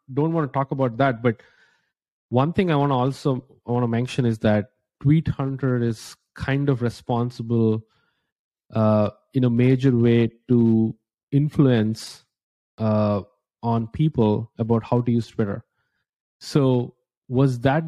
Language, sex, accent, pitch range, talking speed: English, male, Indian, 115-135 Hz, 145 wpm